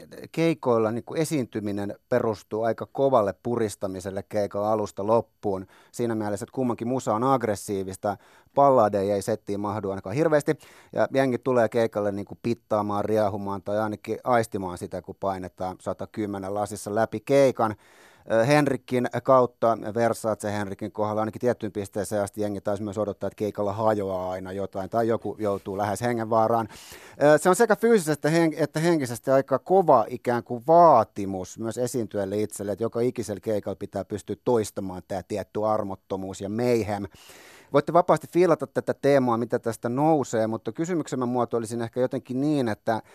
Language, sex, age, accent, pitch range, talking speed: Finnish, male, 30-49, native, 100-120 Hz, 145 wpm